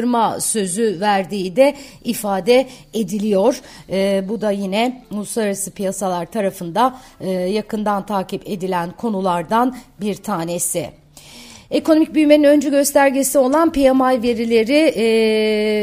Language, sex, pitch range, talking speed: Turkish, female, 195-245 Hz, 100 wpm